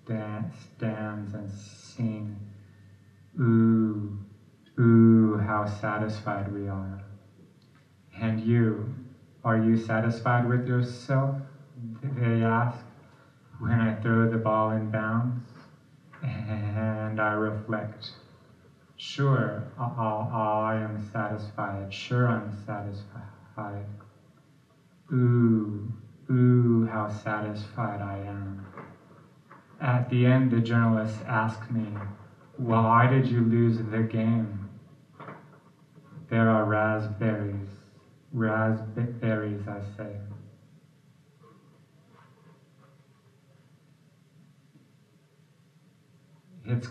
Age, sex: 30-49, male